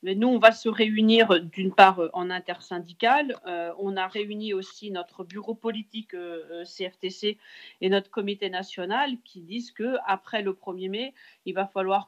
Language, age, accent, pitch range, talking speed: French, 40-59, French, 185-225 Hz, 165 wpm